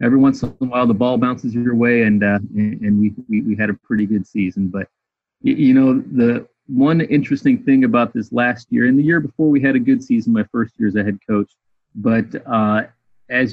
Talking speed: 225 wpm